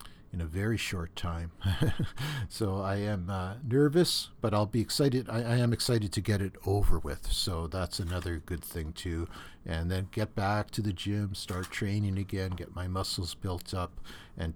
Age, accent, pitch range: 60-79, American, 95-115 Hz